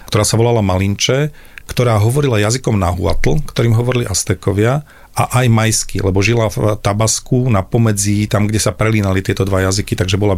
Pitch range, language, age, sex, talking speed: 100-120 Hz, Slovak, 40-59, male, 170 wpm